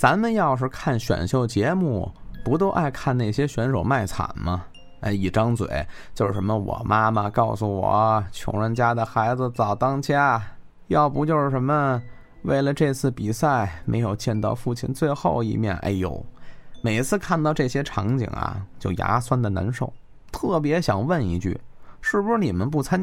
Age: 20-39